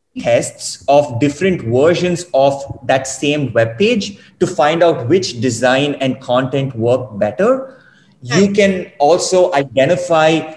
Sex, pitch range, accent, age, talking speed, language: male, 145-200 Hz, Indian, 30-49, 125 wpm, English